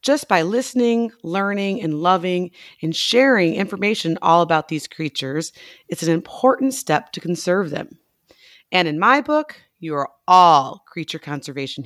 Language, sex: English, female